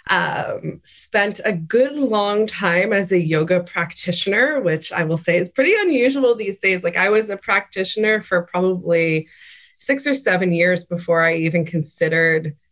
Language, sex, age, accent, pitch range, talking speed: English, female, 20-39, American, 160-200 Hz, 160 wpm